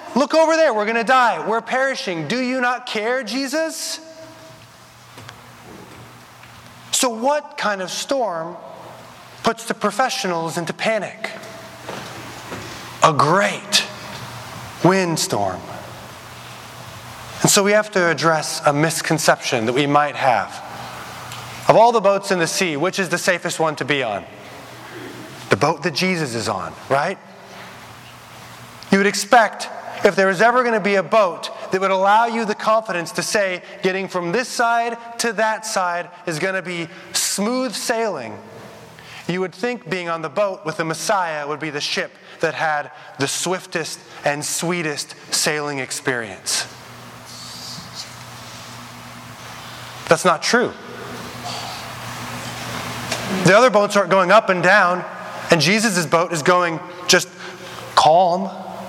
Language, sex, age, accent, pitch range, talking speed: English, male, 30-49, American, 165-225 Hz, 135 wpm